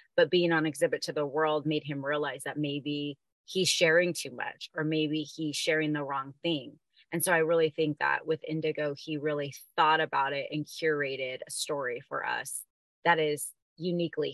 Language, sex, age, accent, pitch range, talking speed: English, female, 30-49, American, 150-170 Hz, 190 wpm